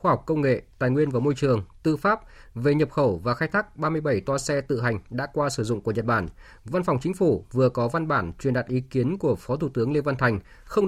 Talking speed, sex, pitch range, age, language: 270 wpm, male, 120-160 Hz, 20-39, Vietnamese